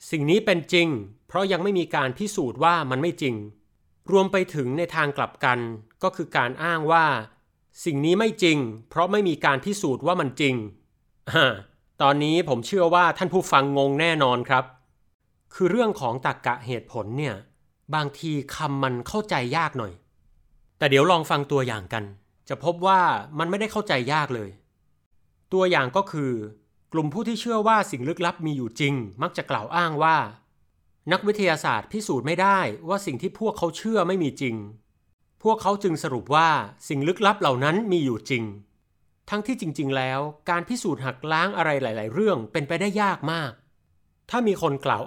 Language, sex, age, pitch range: Thai, male, 30-49, 125-180 Hz